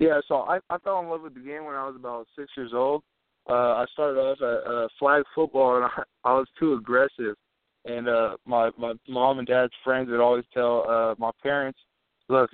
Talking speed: 220 wpm